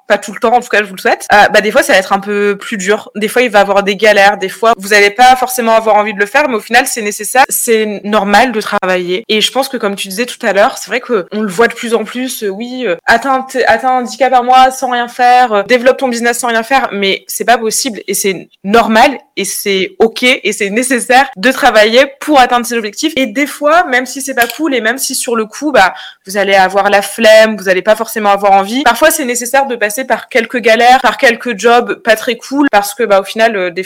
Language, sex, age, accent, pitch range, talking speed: French, female, 20-39, French, 205-245 Hz, 275 wpm